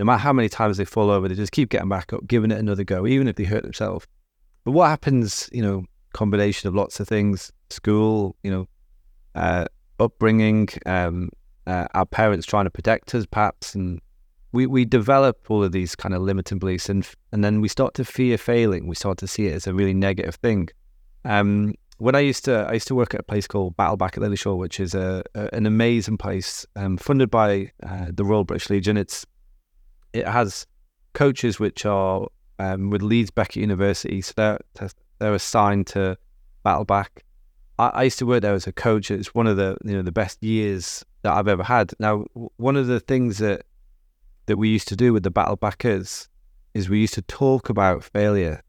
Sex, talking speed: male, 210 wpm